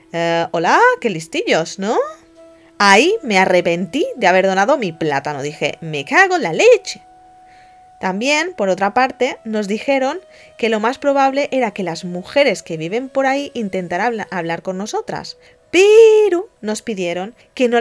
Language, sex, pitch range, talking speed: Spanish, female, 190-280 Hz, 155 wpm